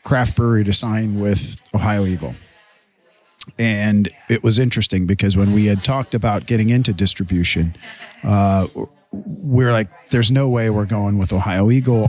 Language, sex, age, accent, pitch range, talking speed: English, male, 40-59, American, 100-120 Hz, 160 wpm